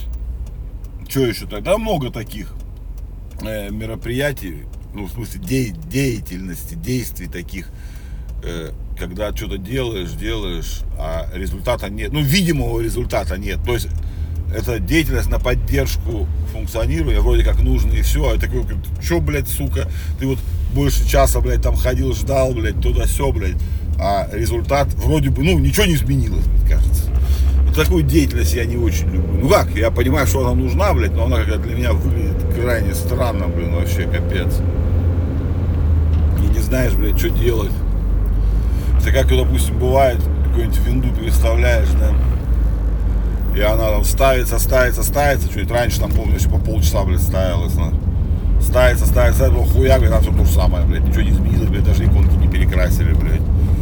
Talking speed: 155 wpm